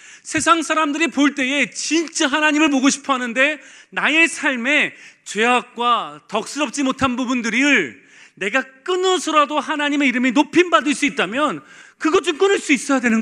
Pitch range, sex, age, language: 230-290 Hz, male, 40-59, Korean